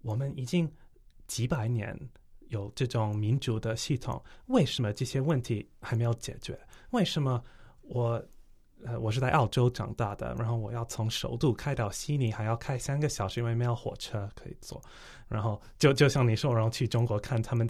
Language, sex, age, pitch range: Chinese, male, 20-39, 115-145 Hz